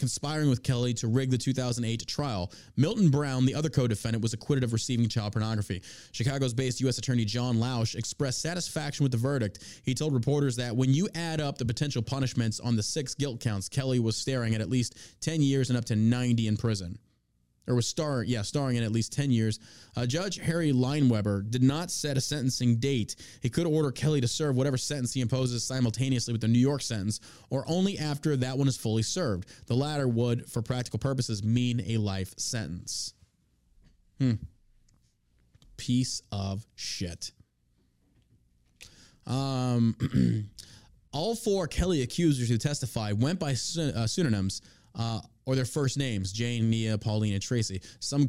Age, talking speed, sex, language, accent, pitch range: 20-39, 175 wpm, male, English, American, 115-140 Hz